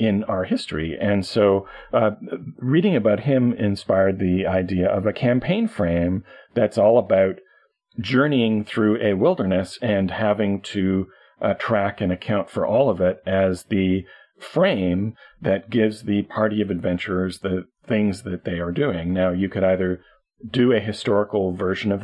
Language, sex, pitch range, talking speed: English, male, 95-105 Hz, 160 wpm